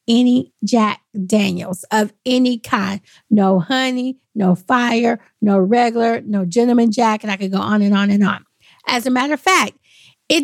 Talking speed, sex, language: 170 wpm, female, English